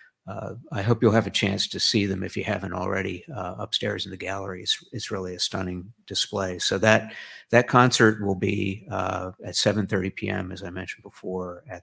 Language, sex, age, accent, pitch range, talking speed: English, male, 50-69, American, 95-110 Hz, 205 wpm